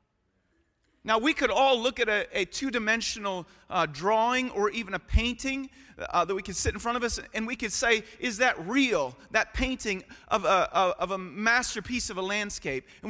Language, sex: English, male